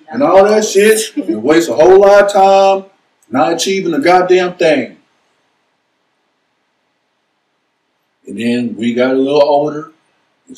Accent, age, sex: American, 50-69, male